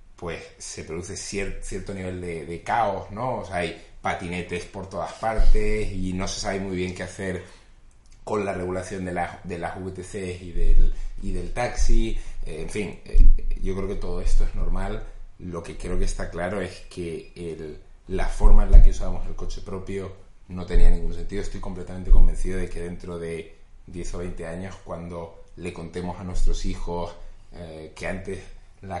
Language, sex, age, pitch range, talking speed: Spanish, male, 30-49, 85-100 Hz, 180 wpm